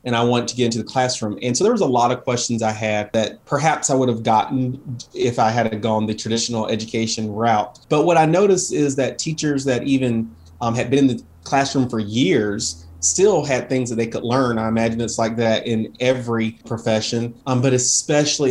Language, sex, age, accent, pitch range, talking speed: English, male, 30-49, American, 110-130 Hz, 215 wpm